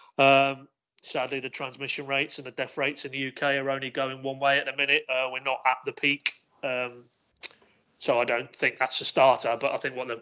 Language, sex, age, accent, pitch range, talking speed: English, male, 30-49, British, 125-145 Hz, 230 wpm